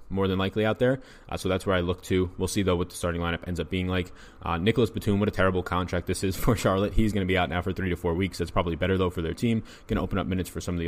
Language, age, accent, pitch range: English, 20-39, American, 90-110 Hz